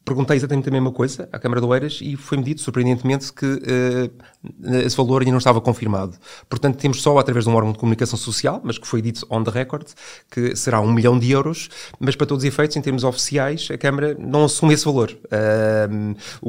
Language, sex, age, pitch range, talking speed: Portuguese, male, 30-49, 115-135 Hz, 215 wpm